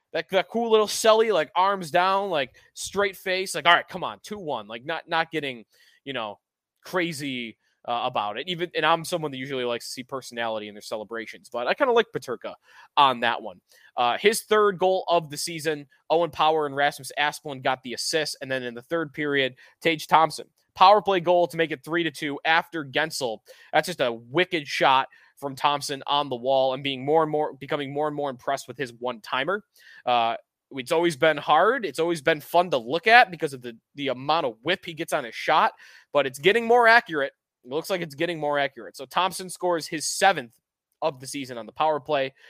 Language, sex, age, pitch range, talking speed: English, male, 20-39, 130-170 Hz, 215 wpm